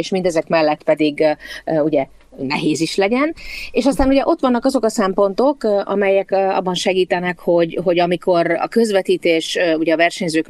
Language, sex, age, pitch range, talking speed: Hungarian, female, 30-49, 155-195 Hz, 155 wpm